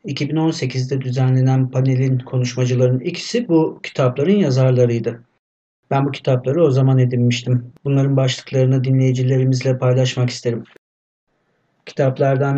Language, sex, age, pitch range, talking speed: Turkish, male, 50-69, 120-140 Hz, 95 wpm